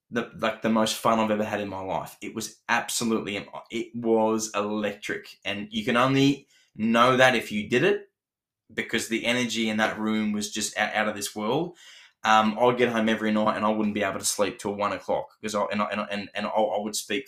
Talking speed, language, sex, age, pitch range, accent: 230 wpm, English, male, 10-29, 105-120 Hz, Australian